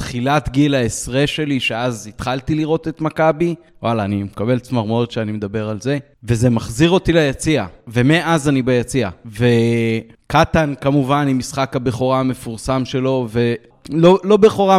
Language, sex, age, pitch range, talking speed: Hebrew, male, 30-49, 125-165 Hz, 140 wpm